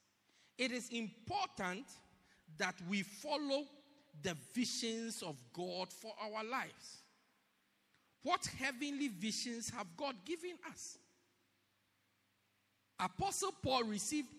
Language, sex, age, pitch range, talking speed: English, male, 50-69, 185-285 Hz, 95 wpm